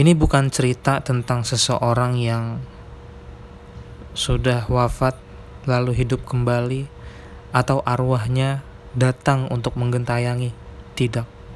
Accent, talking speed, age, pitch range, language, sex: native, 90 wpm, 20-39, 115-130 Hz, Indonesian, male